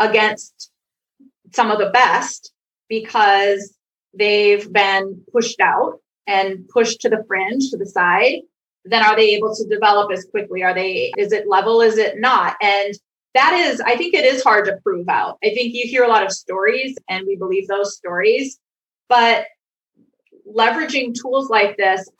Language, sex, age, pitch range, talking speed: English, female, 30-49, 195-235 Hz, 170 wpm